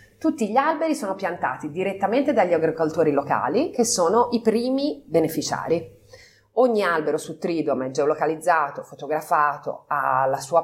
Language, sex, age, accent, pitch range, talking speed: Italian, female, 30-49, native, 150-220 Hz, 135 wpm